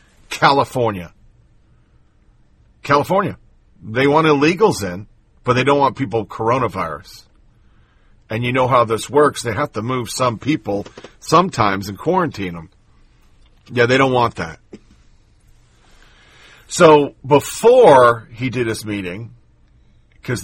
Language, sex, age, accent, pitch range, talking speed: English, male, 40-59, American, 105-140 Hz, 115 wpm